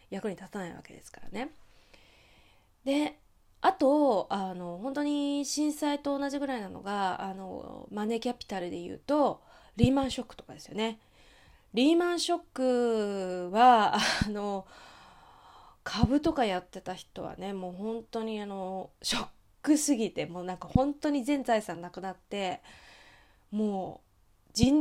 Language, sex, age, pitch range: Japanese, female, 20-39, 195-280 Hz